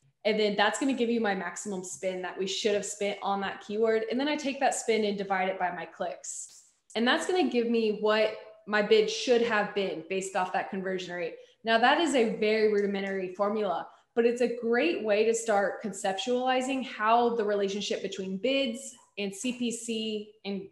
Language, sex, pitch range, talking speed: English, female, 195-240 Hz, 205 wpm